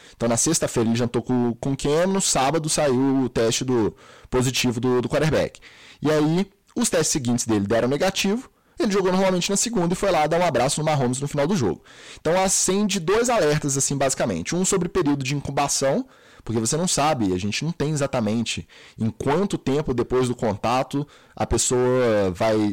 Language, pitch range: Portuguese, 120-175 Hz